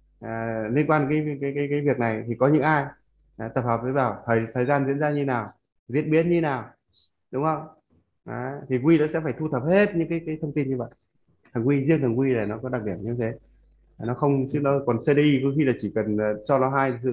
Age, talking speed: 20-39, 265 wpm